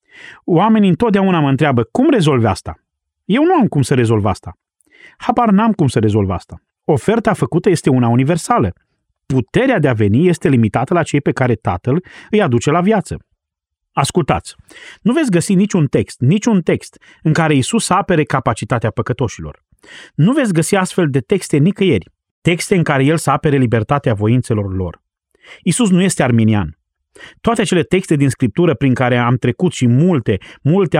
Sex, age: male, 30-49